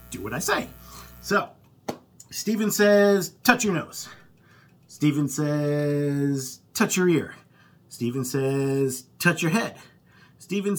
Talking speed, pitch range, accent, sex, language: 115 wpm, 120-170 Hz, American, male, English